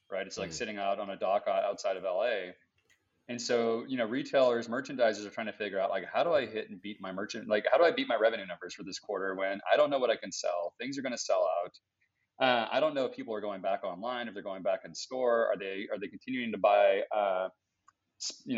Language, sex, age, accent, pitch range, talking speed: English, male, 30-49, American, 100-130 Hz, 260 wpm